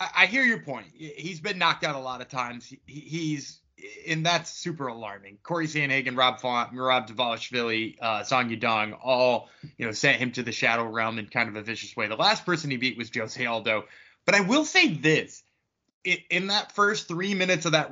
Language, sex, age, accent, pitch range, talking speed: English, male, 20-39, American, 130-200 Hz, 210 wpm